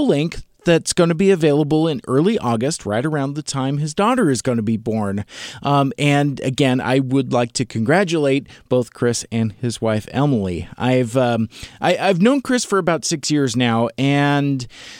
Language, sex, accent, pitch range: English, male, American, 125-175 Hz